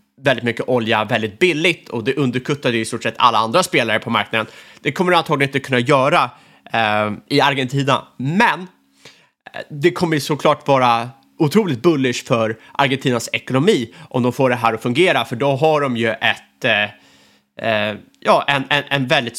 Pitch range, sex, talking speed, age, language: 120-150 Hz, male, 170 wpm, 30-49, Swedish